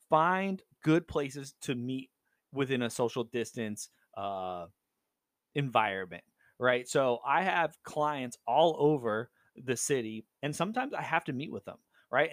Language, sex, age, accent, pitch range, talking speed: English, male, 30-49, American, 115-145 Hz, 140 wpm